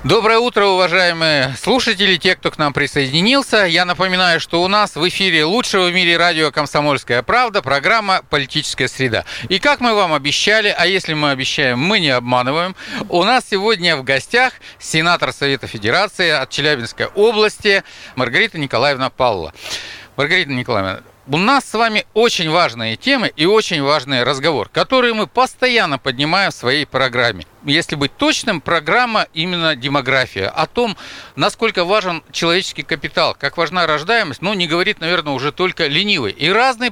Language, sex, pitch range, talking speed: Russian, male, 145-215 Hz, 155 wpm